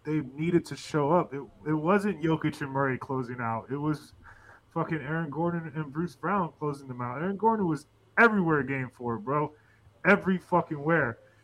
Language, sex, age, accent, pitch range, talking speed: English, male, 20-39, American, 125-165 Hz, 180 wpm